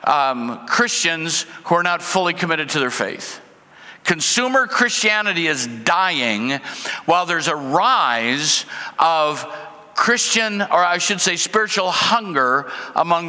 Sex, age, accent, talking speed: male, 60-79, American, 120 wpm